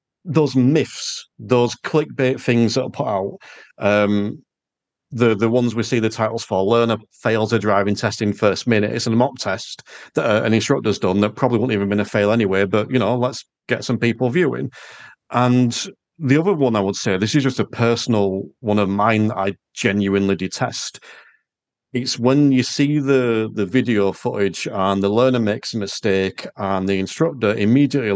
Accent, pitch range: British, 105-130 Hz